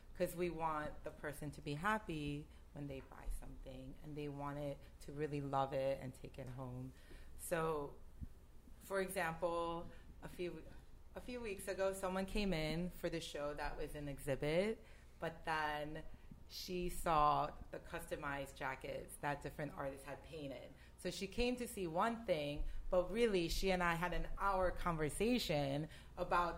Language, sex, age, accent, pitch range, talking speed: English, female, 30-49, American, 150-195 Hz, 160 wpm